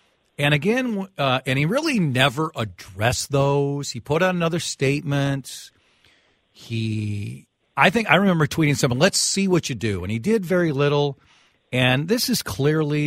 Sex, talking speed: male, 160 wpm